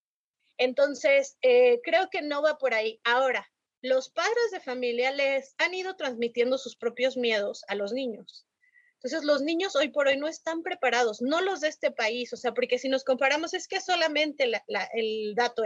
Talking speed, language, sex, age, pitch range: 190 wpm, Spanish, female, 30-49, 230-315 Hz